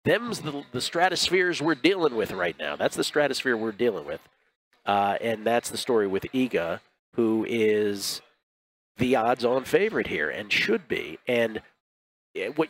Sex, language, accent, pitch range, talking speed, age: male, English, American, 110-140 Hz, 155 wpm, 40-59